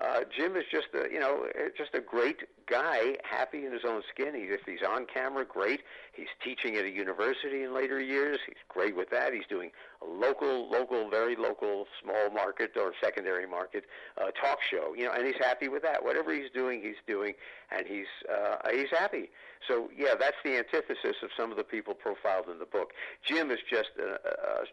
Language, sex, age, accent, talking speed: English, male, 50-69, American, 205 wpm